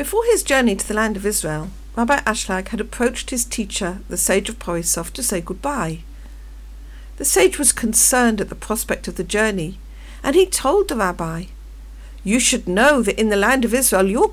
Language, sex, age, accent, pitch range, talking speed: English, female, 50-69, British, 170-260 Hz, 195 wpm